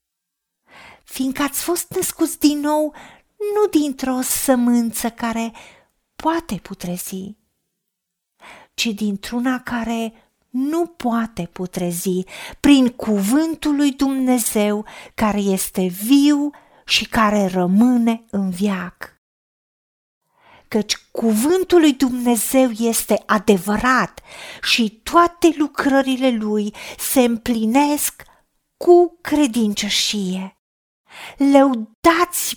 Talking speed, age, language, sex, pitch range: 85 wpm, 40-59, Romanian, female, 220-295 Hz